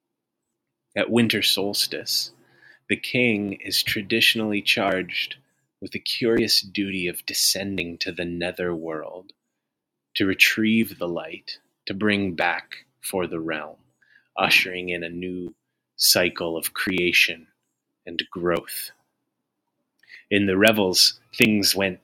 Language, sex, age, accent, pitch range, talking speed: English, male, 30-49, American, 85-100 Hz, 115 wpm